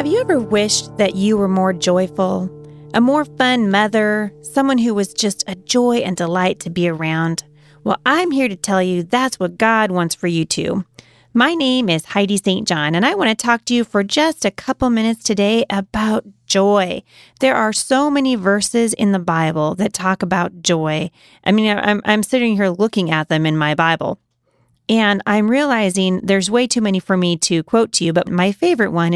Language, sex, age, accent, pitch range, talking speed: English, female, 30-49, American, 175-240 Hz, 200 wpm